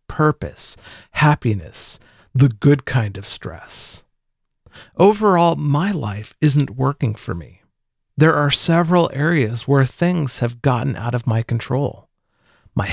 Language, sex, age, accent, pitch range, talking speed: English, male, 40-59, American, 115-155 Hz, 125 wpm